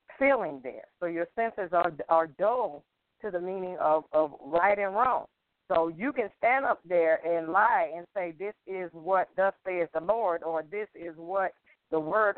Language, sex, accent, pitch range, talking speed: English, female, American, 165-205 Hz, 190 wpm